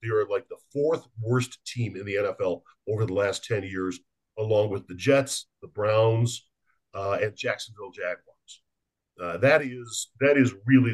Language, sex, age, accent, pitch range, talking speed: English, male, 50-69, American, 100-140 Hz, 170 wpm